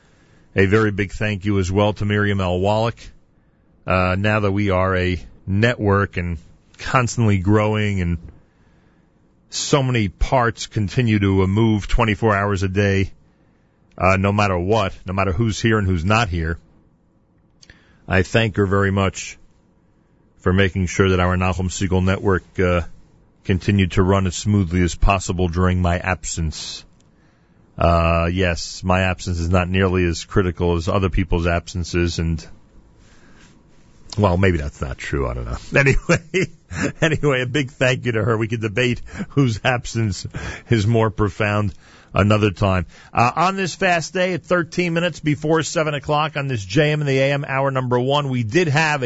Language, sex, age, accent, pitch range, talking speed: English, male, 40-59, American, 90-120 Hz, 160 wpm